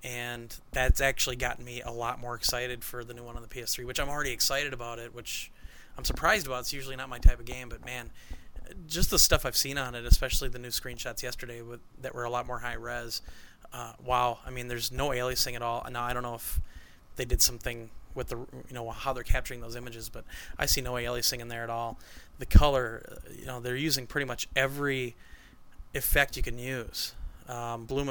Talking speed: 225 wpm